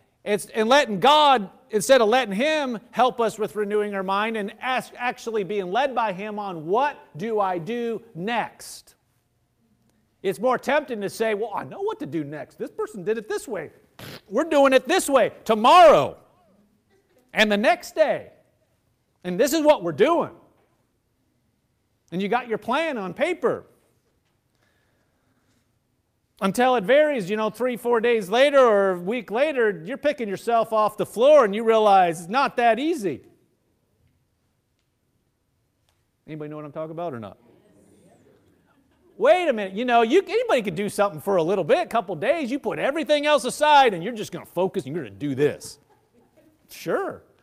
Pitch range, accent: 180-275 Hz, American